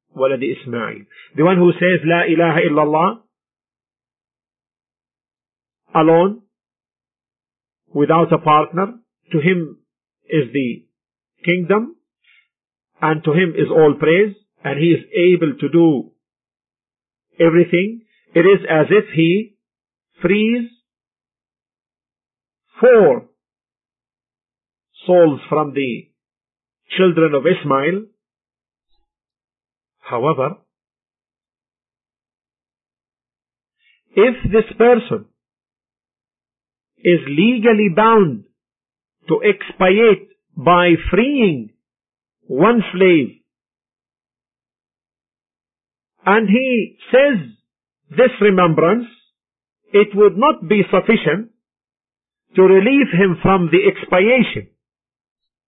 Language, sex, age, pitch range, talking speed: English, male, 50-69, 165-220 Hz, 75 wpm